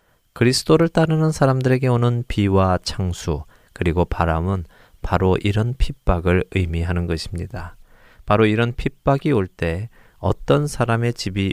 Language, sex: Korean, male